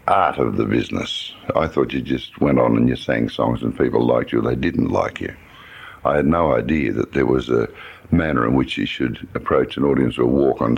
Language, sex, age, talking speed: English, male, 60-79, 230 wpm